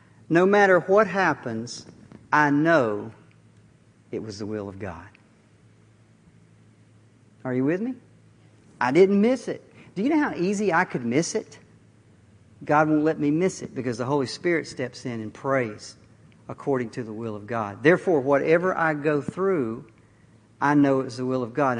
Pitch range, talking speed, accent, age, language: 115-180 Hz, 170 wpm, American, 50-69, English